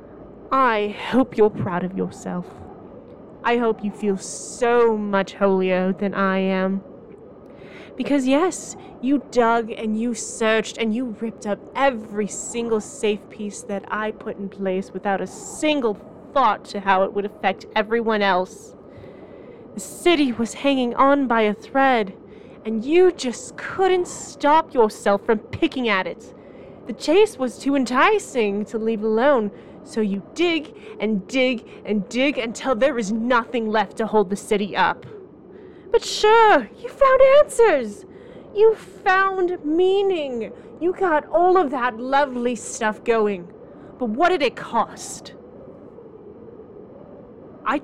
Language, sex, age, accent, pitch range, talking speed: English, female, 20-39, American, 205-275 Hz, 140 wpm